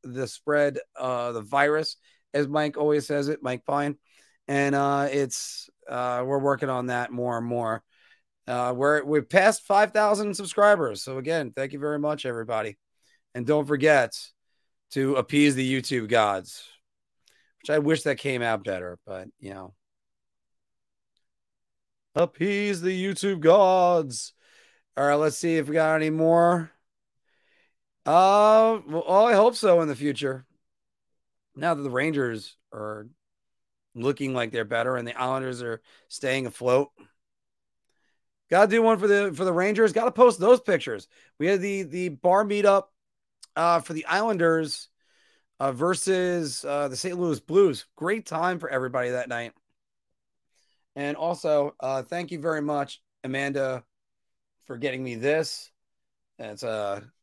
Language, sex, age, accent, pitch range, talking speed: English, male, 30-49, American, 125-175 Hz, 150 wpm